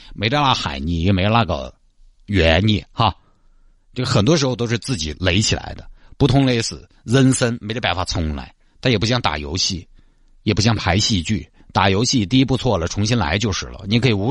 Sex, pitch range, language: male, 90-120 Hz, Chinese